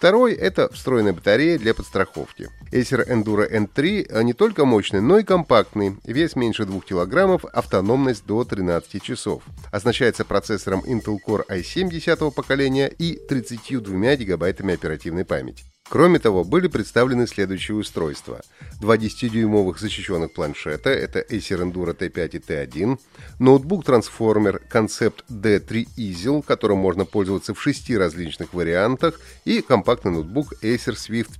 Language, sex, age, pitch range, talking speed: Russian, male, 30-49, 105-140 Hz, 130 wpm